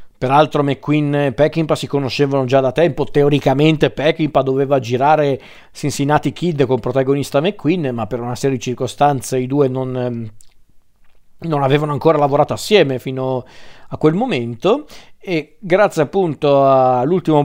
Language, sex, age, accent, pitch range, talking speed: Italian, male, 40-59, native, 130-155 Hz, 140 wpm